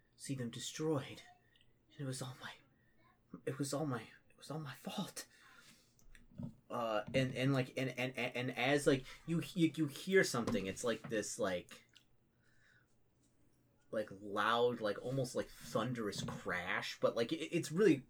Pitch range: 120-165 Hz